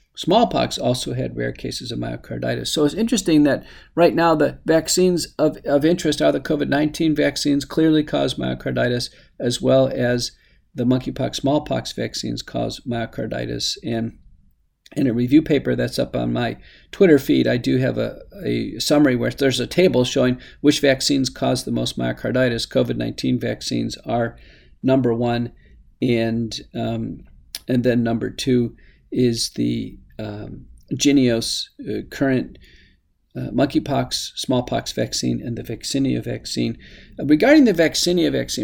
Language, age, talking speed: English, 50-69, 145 wpm